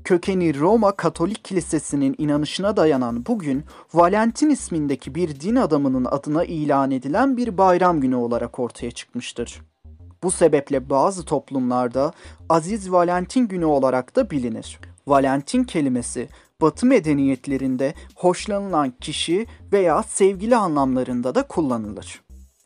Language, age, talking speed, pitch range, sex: Turkish, 40-59, 110 wpm, 125-185 Hz, male